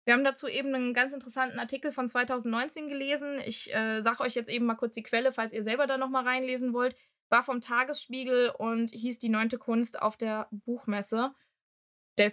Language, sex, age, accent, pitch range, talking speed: German, female, 20-39, German, 215-245 Hz, 195 wpm